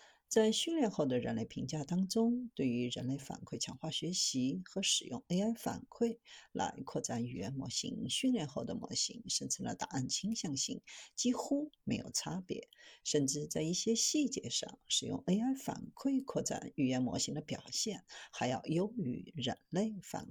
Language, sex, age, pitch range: Chinese, female, 50-69, 160-250 Hz